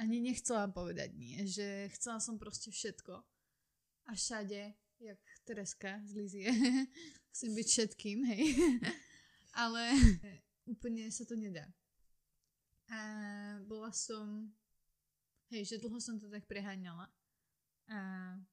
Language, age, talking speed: Slovak, 20-39, 115 wpm